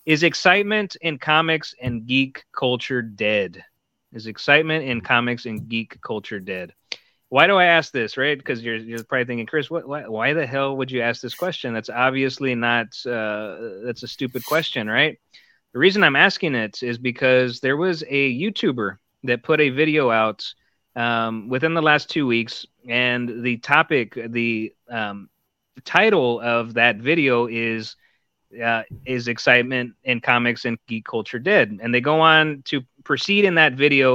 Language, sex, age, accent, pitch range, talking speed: English, male, 30-49, American, 120-150 Hz, 170 wpm